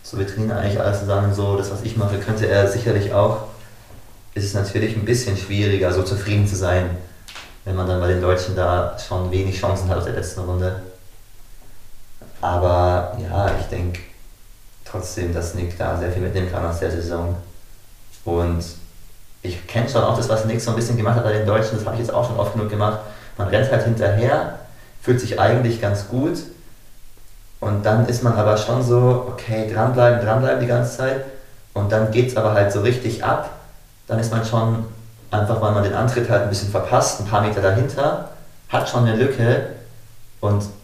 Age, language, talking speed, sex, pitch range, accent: 30-49, German, 195 wpm, male, 100-115 Hz, German